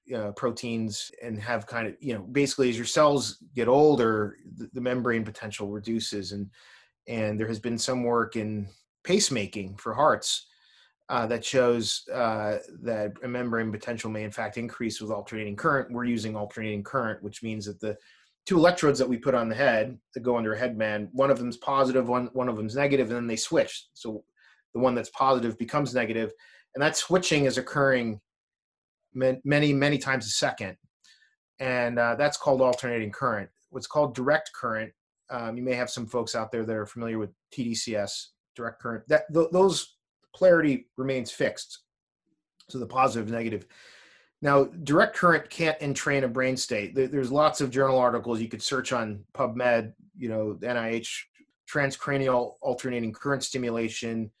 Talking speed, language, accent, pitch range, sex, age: 175 wpm, English, American, 110-135 Hz, male, 30-49